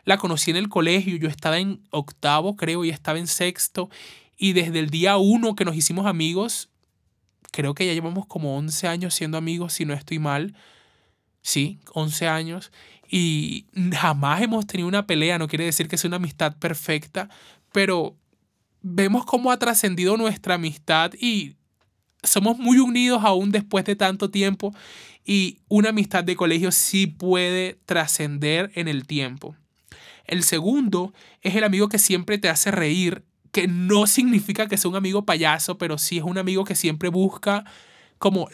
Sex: male